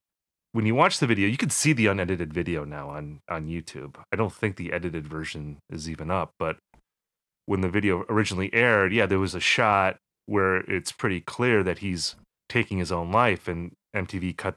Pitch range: 85-110 Hz